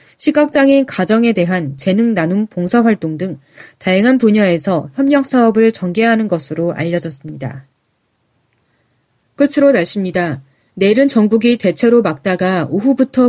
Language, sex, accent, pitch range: Korean, female, native, 160-240 Hz